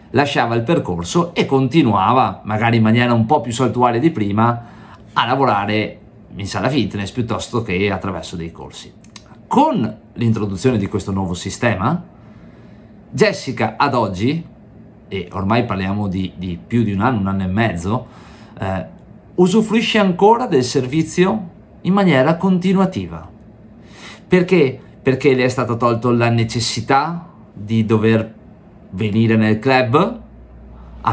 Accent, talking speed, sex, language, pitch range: native, 130 wpm, male, Italian, 105-130 Hz